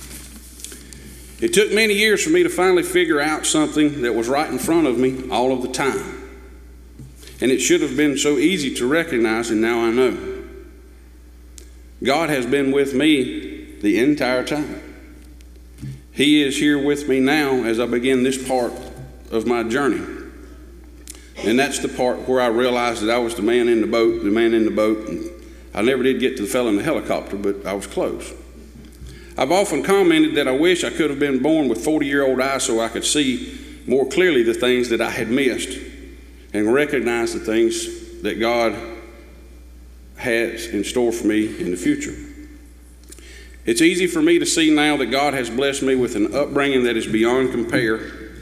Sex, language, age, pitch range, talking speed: male, English, 50-69, 105-155 Hz, 190 wpm